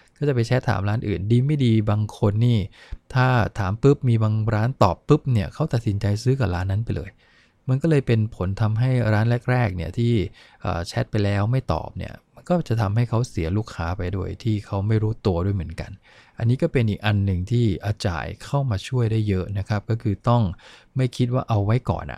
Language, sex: English, male